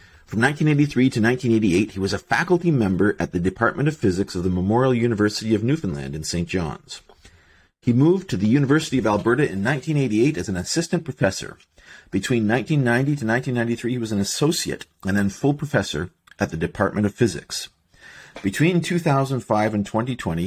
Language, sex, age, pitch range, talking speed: English, male, 40-59, 100-145 Hz, 165 wpm